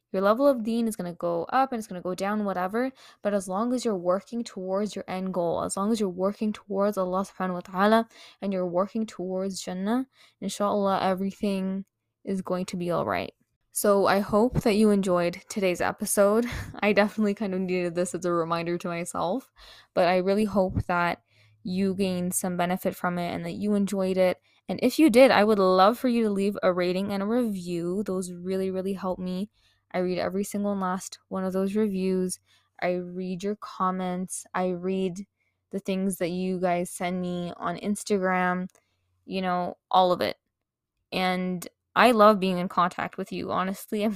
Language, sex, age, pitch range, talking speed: English, female, 10-29, 185-210 Hz, 195 wpm